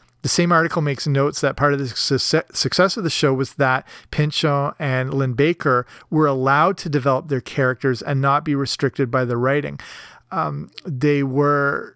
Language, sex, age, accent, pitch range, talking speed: English, male, 40-59, American, 130-150 Hz, 175 wpm